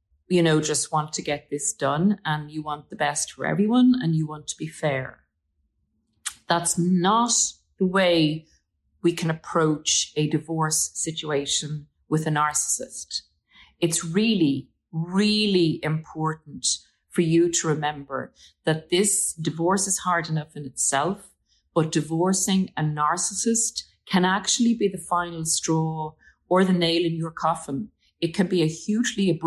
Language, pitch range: English, 150-185 Hz